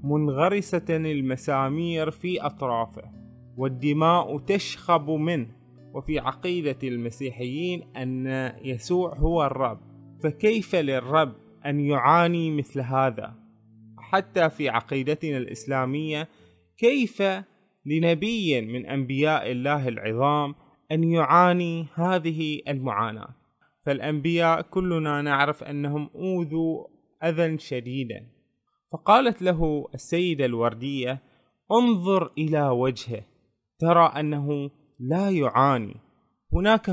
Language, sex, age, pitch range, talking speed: Arabic, male, 20-39, 130-170 Hz, 85 wpm